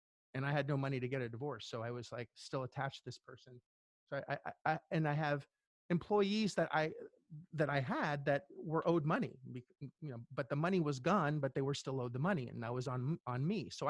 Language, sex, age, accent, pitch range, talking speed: English, male, 30-49, American, 130-170 Hz, 245 wpm